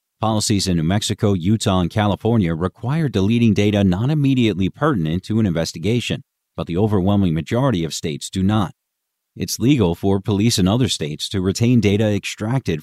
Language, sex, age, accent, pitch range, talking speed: English, male, 40-59, American, 95-125 Hz, 165 wpm